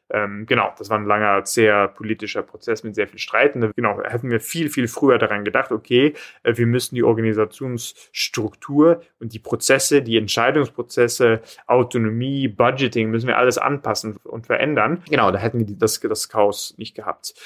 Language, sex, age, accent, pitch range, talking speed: German, male, 30-49, German, 110-130 Hz, 165 wpm